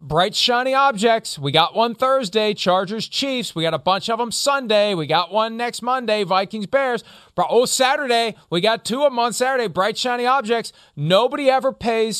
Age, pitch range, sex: 40-59, 170-250 Hz, male